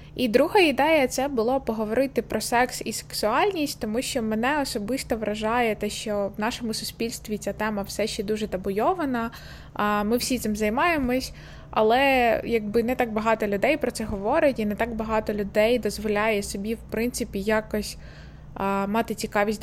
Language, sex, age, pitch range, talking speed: Ukrainian, female, 20-39, 205-250 Hz, 160 wpm